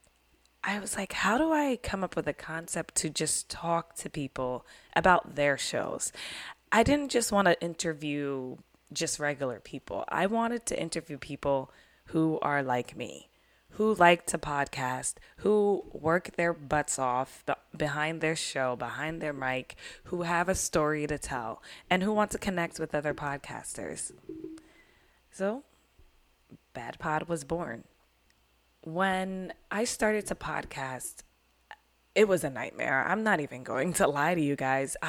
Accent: American